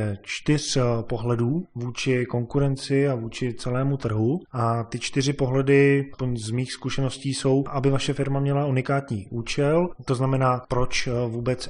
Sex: male